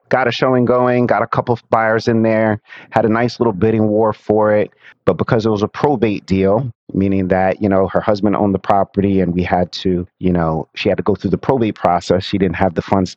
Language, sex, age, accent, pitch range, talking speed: English, male, 30-49, American, 95-115 Hz, 245 wpm